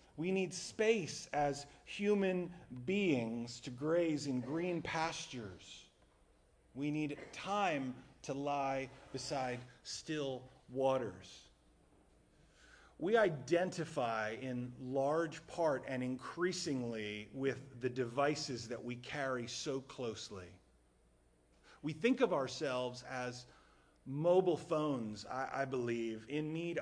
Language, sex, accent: English, male, American